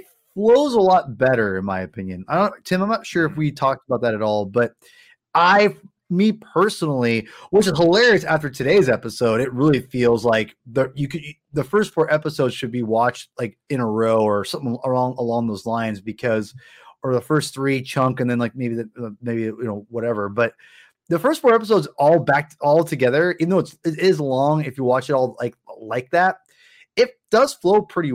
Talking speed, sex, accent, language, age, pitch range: 205 wpm, male, American, English, 20-39, 120-175 Hz